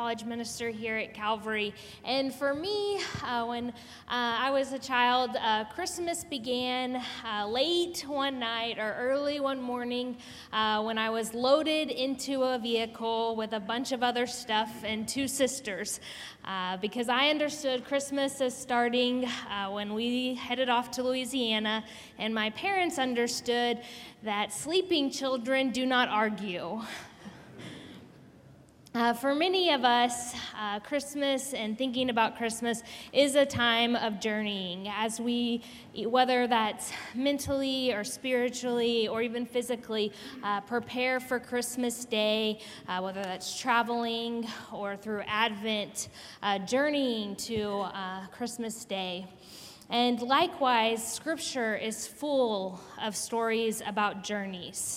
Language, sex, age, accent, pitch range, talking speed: English, female, 10-29, American, 220-260 Hz, 130 wpm